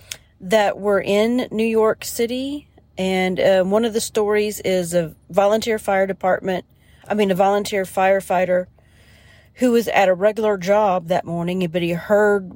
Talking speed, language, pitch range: 160 wpm, English, 180-210 Hz